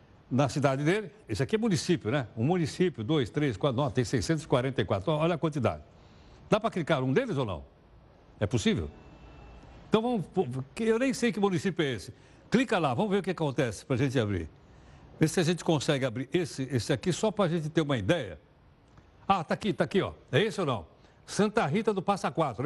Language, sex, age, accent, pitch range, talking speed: Portuguese, male, 60-79, Brazilian, 135-185 Hz, 210 wpm